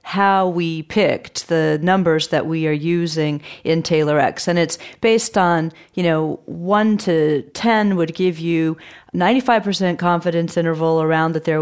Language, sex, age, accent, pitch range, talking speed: English, female, 40-59, American, 160-190 Hz, 155 wpm